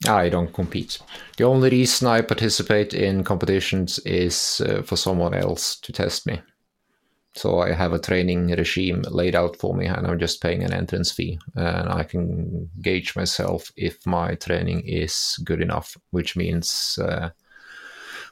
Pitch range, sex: 85-95 Hz, male